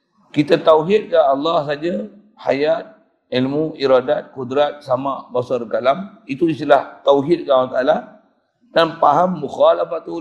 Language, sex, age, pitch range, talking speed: Malay, male, 50-69, 140-200 Hz, 130 wpm